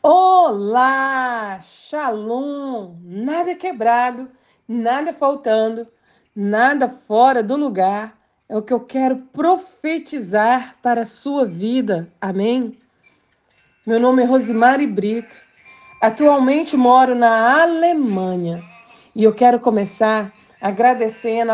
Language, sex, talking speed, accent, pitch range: Portuguese, female, 100 wpm, Brazilian, 215-270 Hz